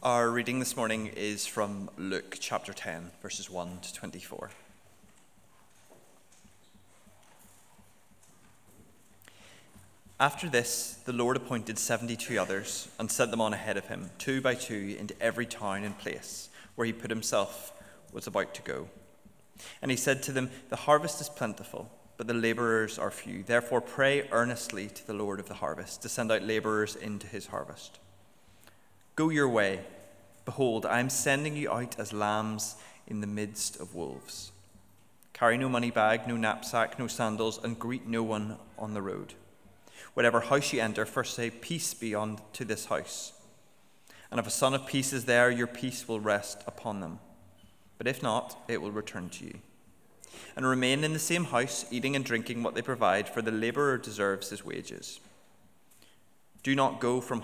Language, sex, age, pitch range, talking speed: English, male, 20-39, 105-125 Hz, 165 wpm